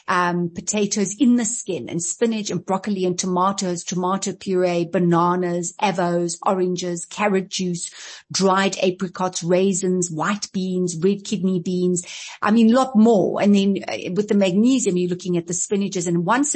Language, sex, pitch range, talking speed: English, female, 180-225 Hz, 155 wpm